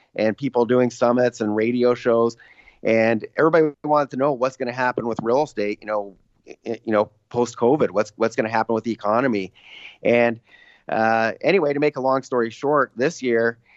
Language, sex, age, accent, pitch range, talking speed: English, male, 30-49, American, 110-125 Hz, 185 wpm